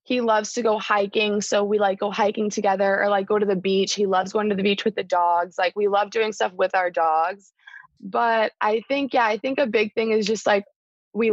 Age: 20-39